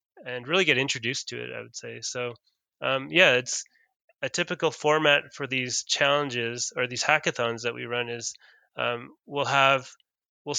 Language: English